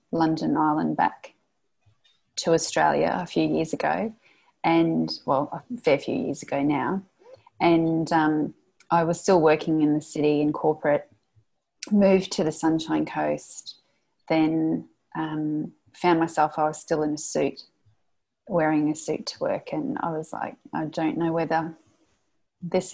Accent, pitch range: Australian, 150-175 Hz